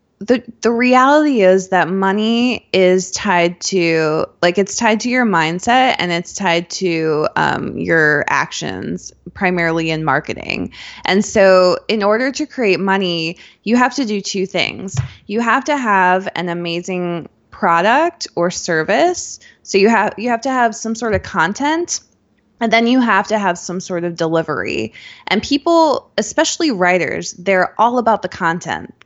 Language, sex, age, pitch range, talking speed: English, female, 20-39, 175-230 Hz, 160 wpm